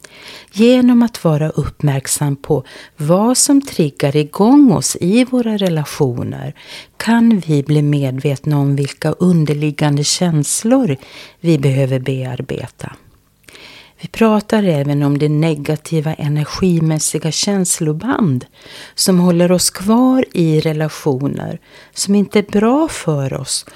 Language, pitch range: Swedish, 145-200 Hz